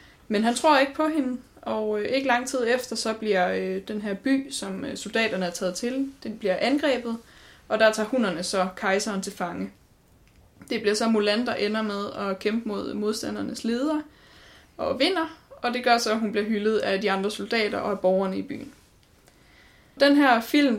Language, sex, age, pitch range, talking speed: Danish, female, 20-39, 200-250 Hz, 190 wpm